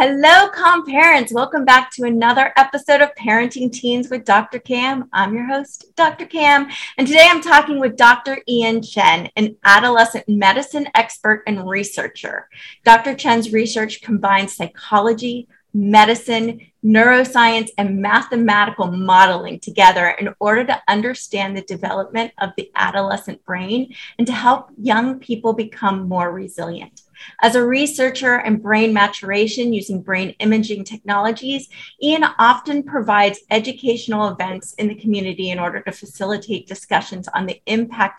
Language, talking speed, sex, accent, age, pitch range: English, 140 wpm, female, American, 30-49, 205-255 Hz